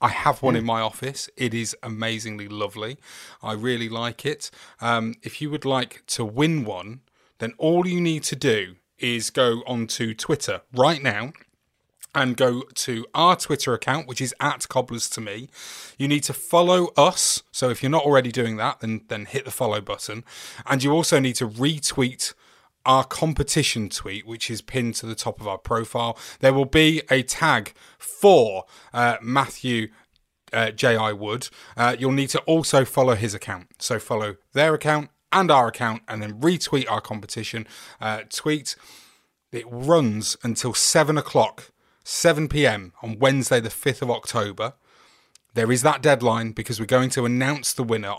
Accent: British